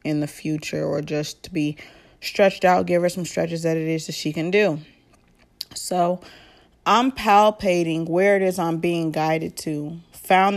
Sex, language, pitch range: female, English, 155-180 Hz